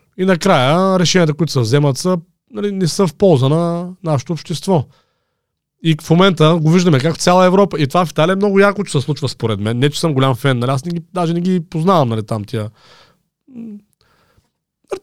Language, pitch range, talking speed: Bulgarian, 140-190 Hz, 210 wpm